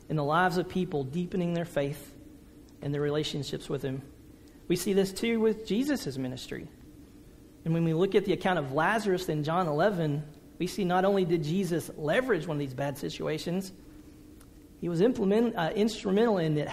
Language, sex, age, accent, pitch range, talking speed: English, male, 40-59, American, 155-200 Hz, 180 wpm